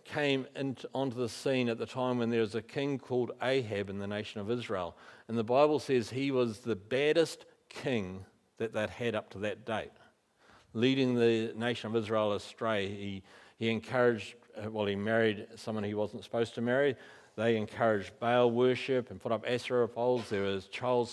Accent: Australian